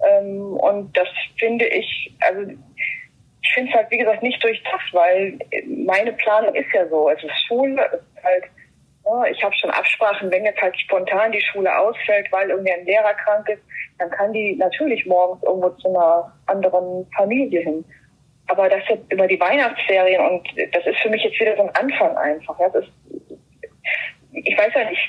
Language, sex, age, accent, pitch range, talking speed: German, female, 20-39, German, 185-235 Hz, 180 wpm